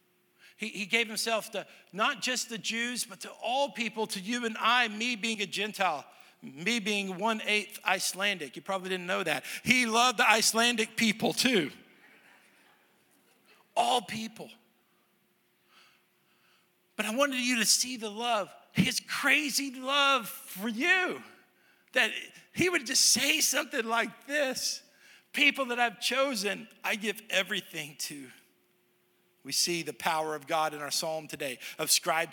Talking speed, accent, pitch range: 145 wpm, American, 165-230 Hz